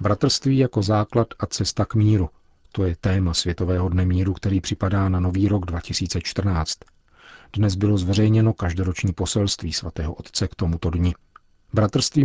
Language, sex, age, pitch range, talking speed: Czech, male, 40-59, 90-110 Hz, 145 wpm